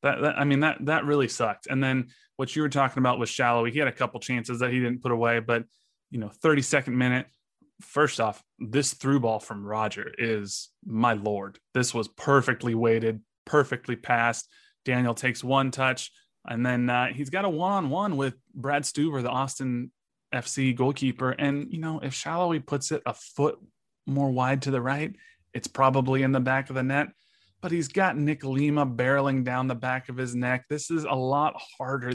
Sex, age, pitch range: male, 20-39, 125-150 Hz